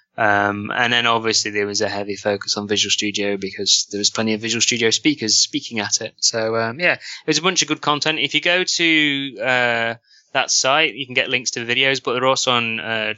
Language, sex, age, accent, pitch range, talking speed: English, male, 20-39, British, 110-130 Hz, 235 wpm